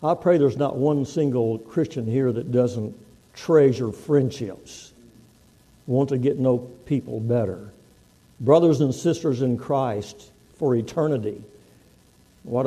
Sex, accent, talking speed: male, American, 125 wpm